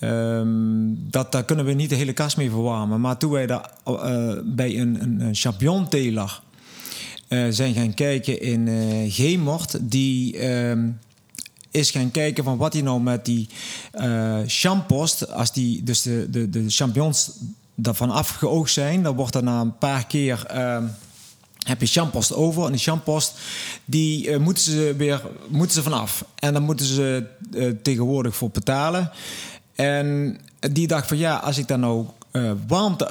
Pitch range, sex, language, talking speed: 120-150 Hz, male, Dutch, 165 wpm